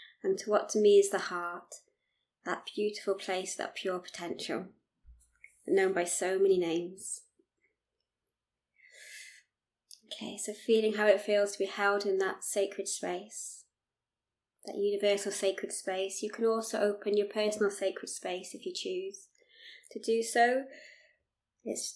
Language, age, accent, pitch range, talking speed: English, 20-39, British, 195-220 Hz, 140 wpm